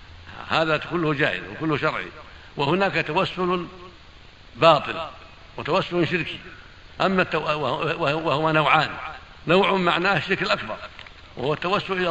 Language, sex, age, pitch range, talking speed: Arabic, male, 60-79, 135-165 Hz, 100 wpm